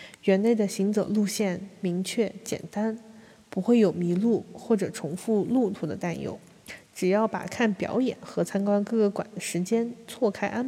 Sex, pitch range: female, 190-225 Hz